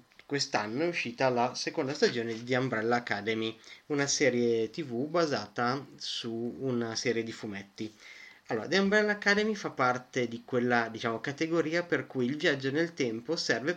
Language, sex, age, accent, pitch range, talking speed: Italian, male, 30-49, native, 115-145 Hz, 155 wpm